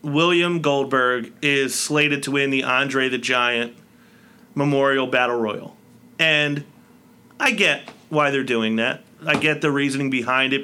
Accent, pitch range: American, 130-160 Hz